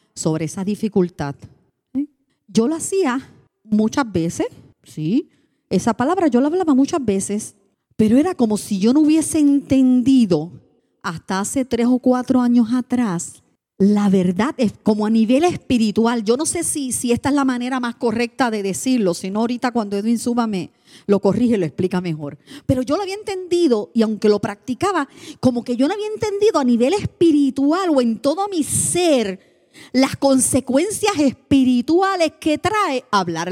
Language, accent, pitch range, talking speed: English, American, 205-310 Hz, 160 wpm